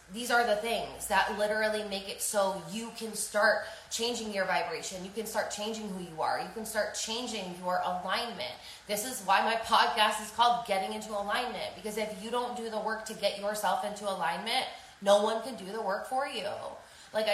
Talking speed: 205 wpm